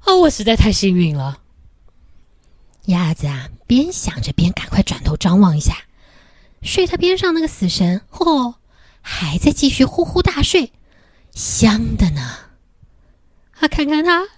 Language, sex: Chinese, female